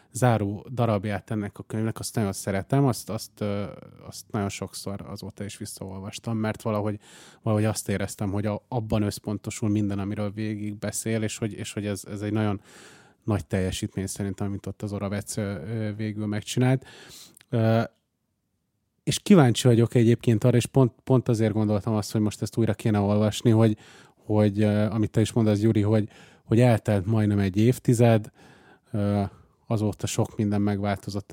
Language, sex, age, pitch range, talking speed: Hungarian, male, 30-49, 100-115 Hz, 155 wpm